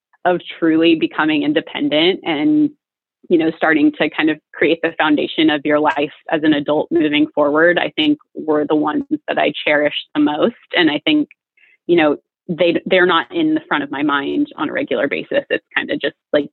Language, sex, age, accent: English, female, 20-39, American